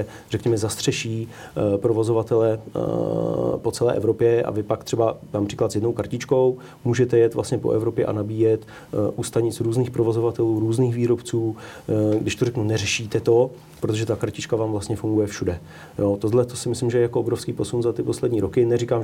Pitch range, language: 105-120 Hz, Slovak